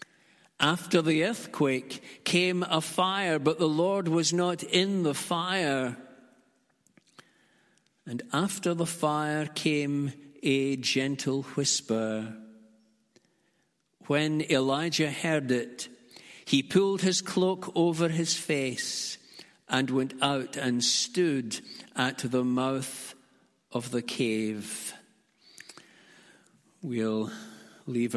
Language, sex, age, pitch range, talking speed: English, male, 60-79, 130-175 Hz, 100 wpm